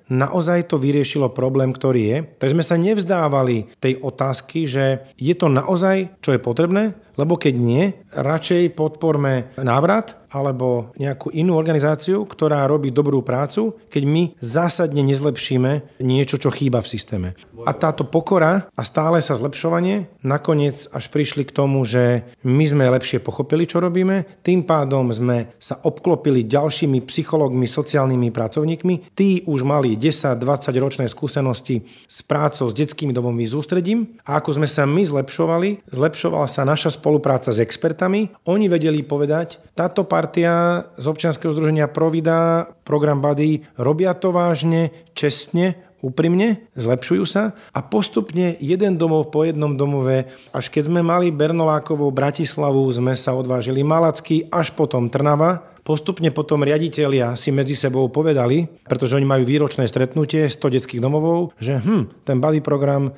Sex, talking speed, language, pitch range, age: male, 145 wpm, Slovak, 135-165 Hz, 40-59